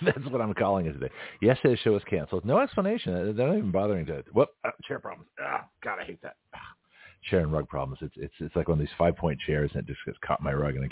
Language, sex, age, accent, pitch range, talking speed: English, male, 50-69, American, 80-105 Hz, 280 wpm